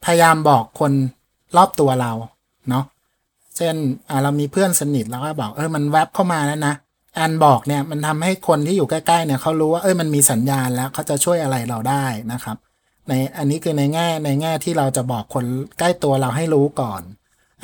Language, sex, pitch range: Thai, male, 130-170 Hz